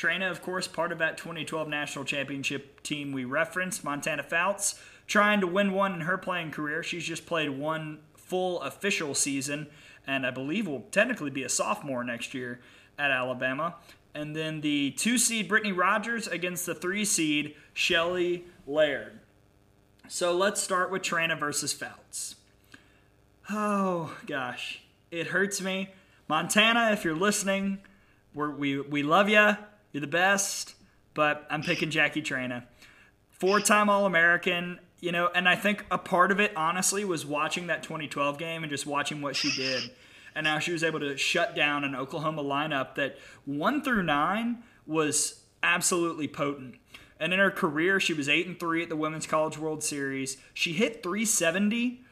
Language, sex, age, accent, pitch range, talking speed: English, male, 30-49, American, 145-190 Hz, 160 wpm